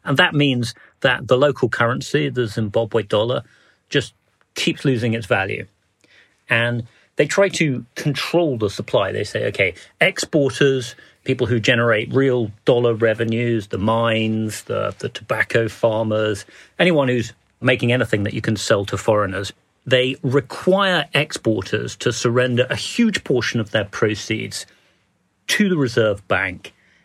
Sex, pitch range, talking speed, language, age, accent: male, 110-135 Hz, 140 wpm, English, 40-59, British